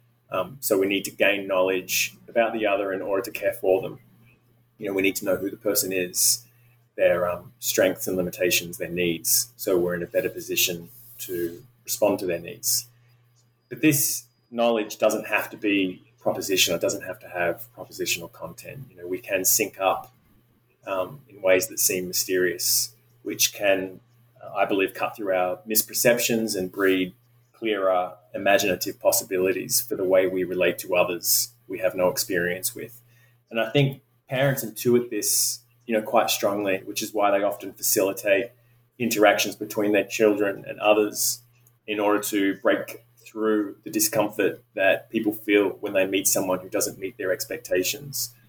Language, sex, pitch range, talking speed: English, male, 95-120 Hz, 170 wpm